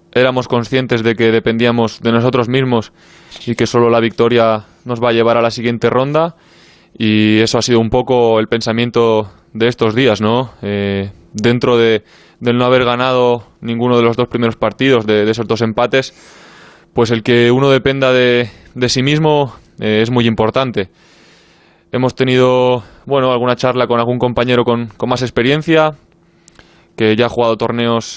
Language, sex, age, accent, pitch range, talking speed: Spanish, male, 20-39, Spanish, 110-125 Hz, 175 wpm